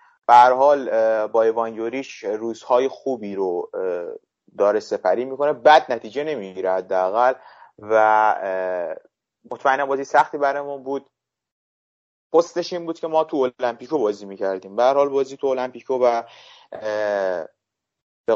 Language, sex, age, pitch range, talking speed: Persian, male, 30-49, 110-140 Hz, 120 wpm